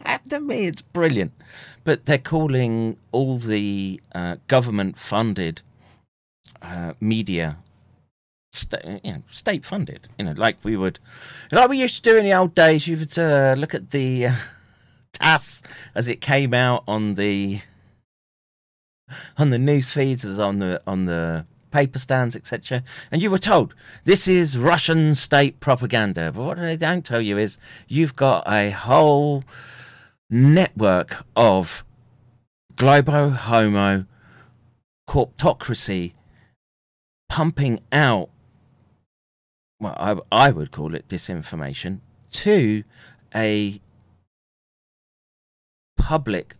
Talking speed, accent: 120 wpm, British